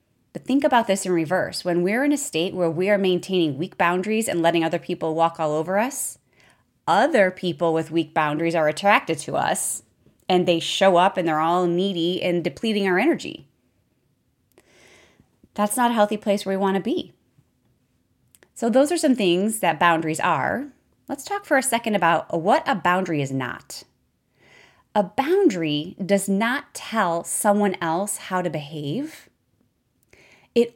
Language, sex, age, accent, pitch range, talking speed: English, female, 30-49, American, 160-210 Hz, 170 wpm